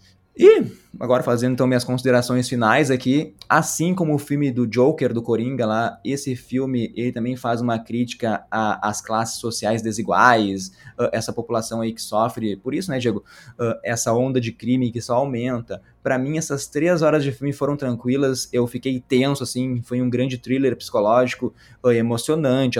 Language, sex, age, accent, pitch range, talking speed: Portuguese, male, 20-39, Brazilian, 115-130 Hz, 165 wpm